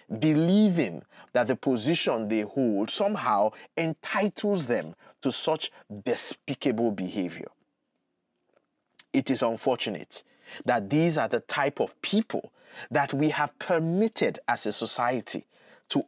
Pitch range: 120-170 Hz